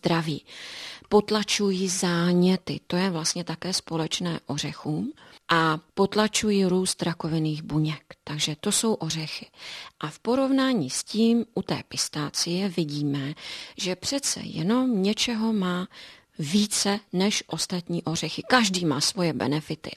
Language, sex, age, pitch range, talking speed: Czech, female, 40-59, 165-205 Hz, 120 wpm